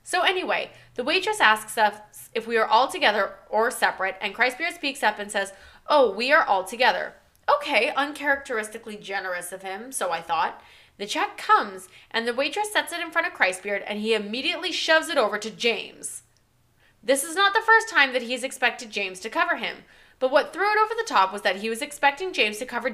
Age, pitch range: 20-39, 210-320 Hz